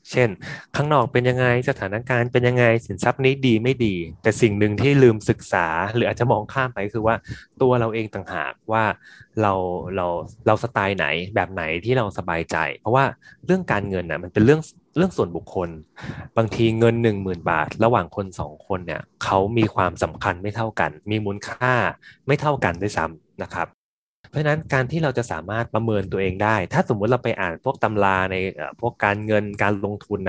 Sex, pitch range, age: male, 95-125 Hz, 20-39